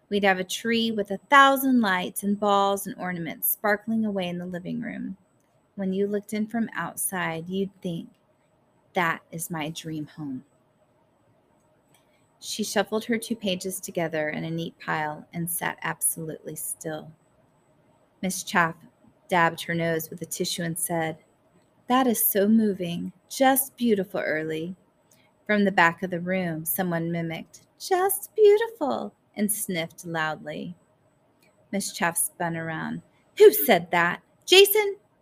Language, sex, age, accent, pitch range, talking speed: English, female, 30-49, American, 170-220 Hz, 140 wpm